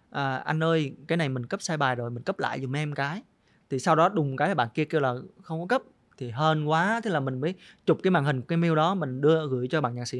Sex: male